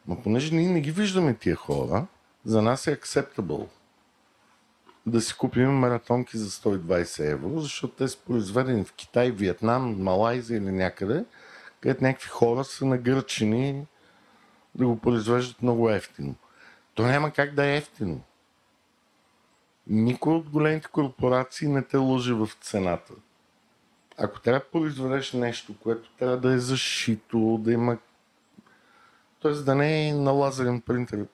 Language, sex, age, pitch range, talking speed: Bulgarian, male, 50-69, 105-130 Hz, 140 wpm